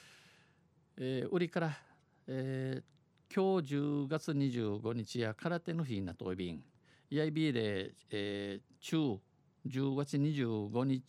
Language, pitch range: Japanese, 110-145 Hz